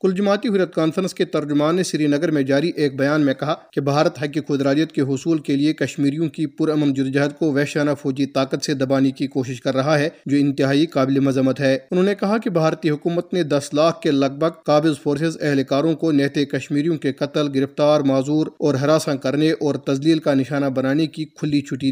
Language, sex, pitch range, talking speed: Urdu, male, 140-160 Hz, 210 wpm